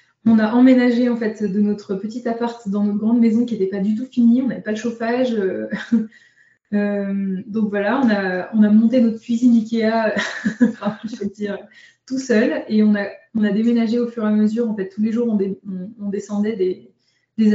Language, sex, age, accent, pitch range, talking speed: French, female, 20-39, French, 205-230 Hz, 215 wpm